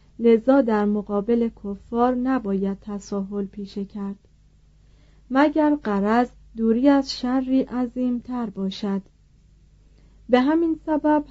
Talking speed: 105 wpm